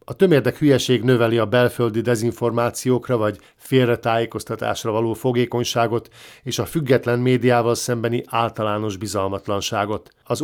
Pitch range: 110-125 Hz